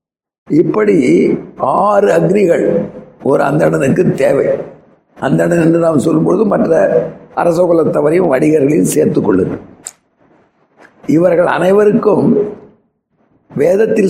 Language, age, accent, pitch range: Tamil, 60-79, native, 175-210 Hz